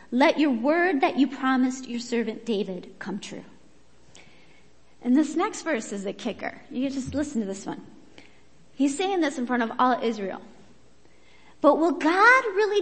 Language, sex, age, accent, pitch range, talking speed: English, female, 30-49, American, 255-355 Hz, 175 wpm